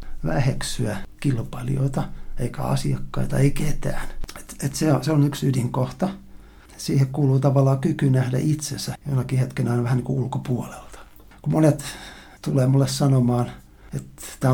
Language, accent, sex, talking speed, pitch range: Finnish, native, male, 130 wpm, 125-140 Hz